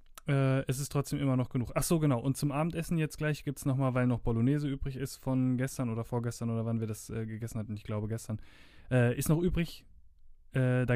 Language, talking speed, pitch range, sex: German, 235 wpm, 115-145 Hz, male